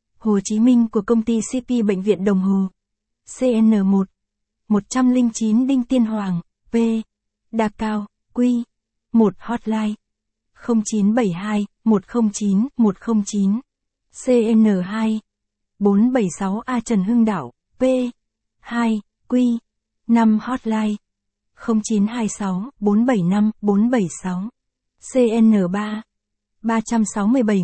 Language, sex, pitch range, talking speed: Vietnamese, female, 200-235 Hz, 90 wpm